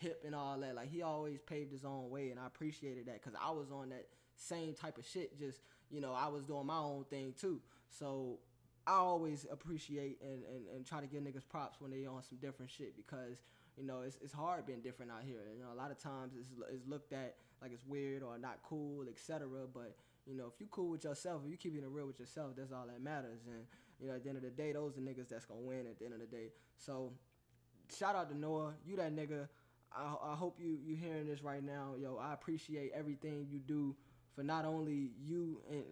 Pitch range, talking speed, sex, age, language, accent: 130-160 Hz, 245 wpm, male, 10-29, English, American